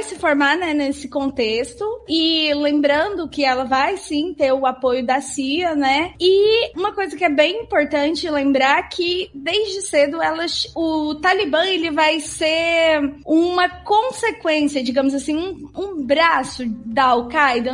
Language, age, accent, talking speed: Portuguese, 20-39, Brazilian, 145 wpm